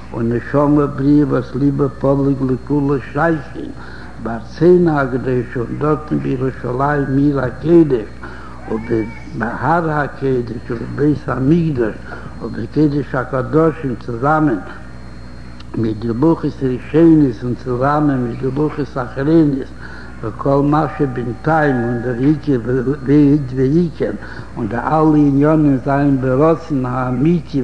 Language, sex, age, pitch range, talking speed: Hebrew, male, 70-89, 125-150 Hz, 75 wpm